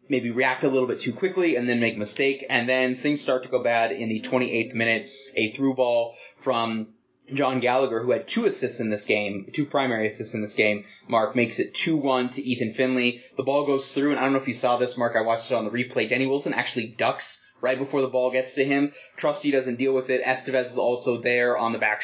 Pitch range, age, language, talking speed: 115-130 Hz, 20-39, English, 250 wpm